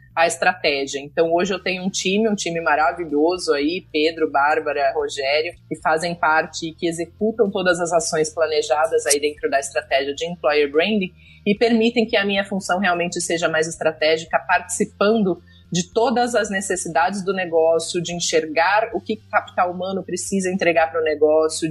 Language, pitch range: Portuguese, 160-195 Hz